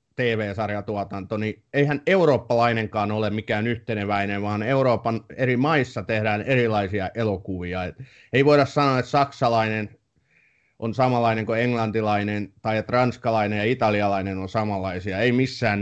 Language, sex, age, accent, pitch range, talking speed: Finnish, male, 30-49, native, 105-135 Hz, 120 wpm